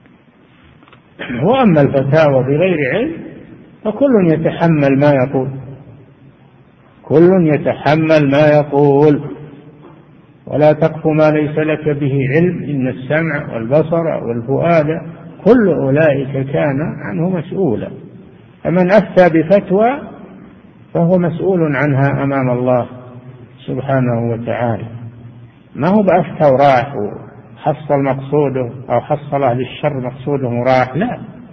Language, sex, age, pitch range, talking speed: Arabic, male, 50-69, 130-160 Hz, 95 wpm